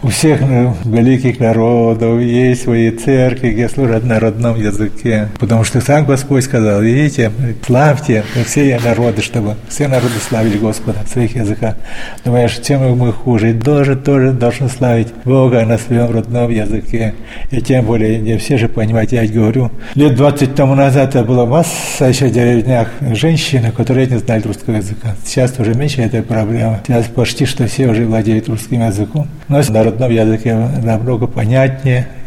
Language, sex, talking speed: Russian, male, 165 wpm